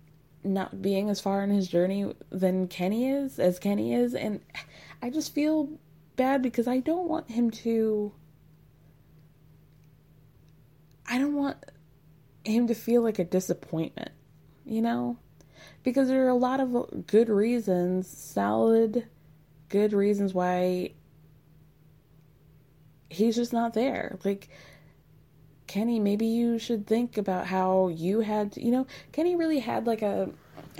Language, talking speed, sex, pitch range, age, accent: English, 135 wpm, female, 150-230 Hz, 20-39, American